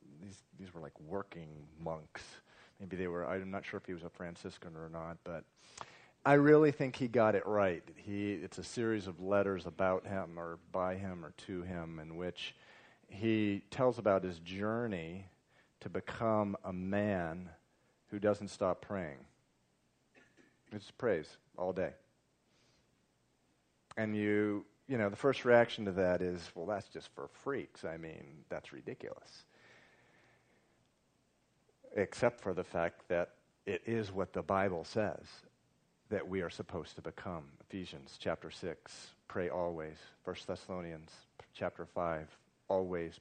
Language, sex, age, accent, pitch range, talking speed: English, male, 40-59, American, 90-110 Hz, 150 wpm